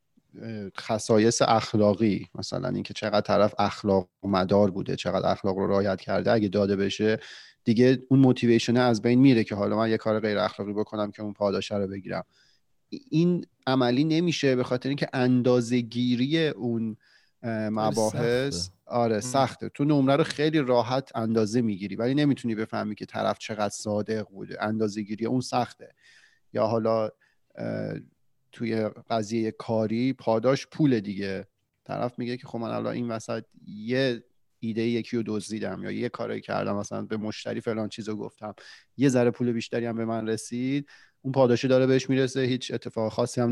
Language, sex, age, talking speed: Persian, male, 40-59, 155 wpm